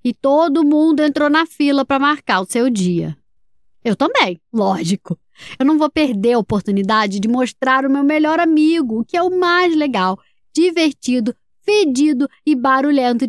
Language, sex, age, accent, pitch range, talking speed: Portuguese, female, 10-29, Brazilian, 235-315 Hz, 160 wpm